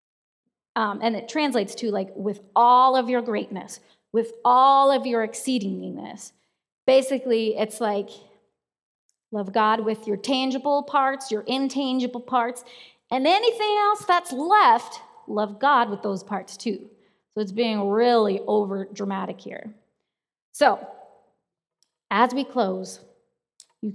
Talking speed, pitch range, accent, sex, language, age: 130 wpm, 205-245 Hz, American, female, English, 30-49